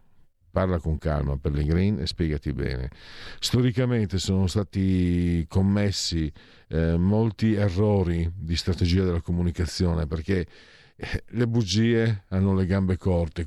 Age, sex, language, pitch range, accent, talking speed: 50-69, male, Italian, 90-110 Hz, native, 125 wpm